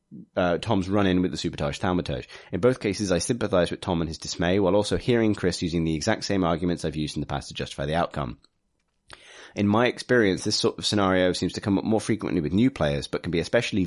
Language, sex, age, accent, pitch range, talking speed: English, male, 30-49, British, 85-105 Hz, 240 wpm